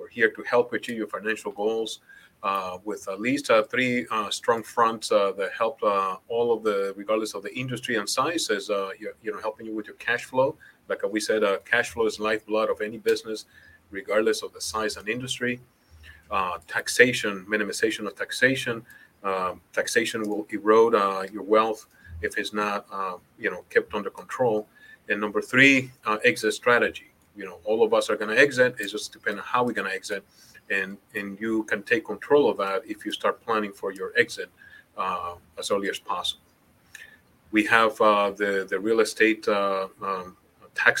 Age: 30-49